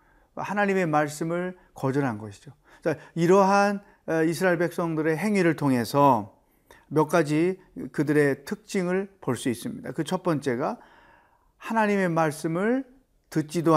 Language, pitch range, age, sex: Korean, 140-185 Hz, 40-59, male